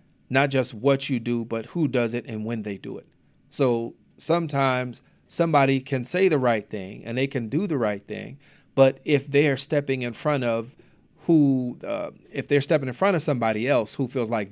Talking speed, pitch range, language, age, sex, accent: 205 wpm, 115-140 Hz, English, 40-59, male, American